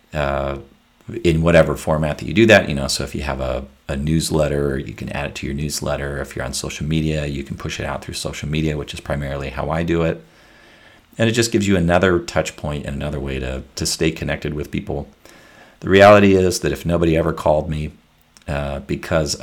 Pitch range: 70-85 Hz